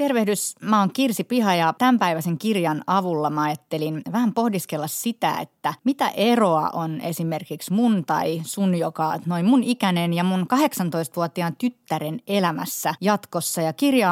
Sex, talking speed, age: female, 150 wpm, 30-49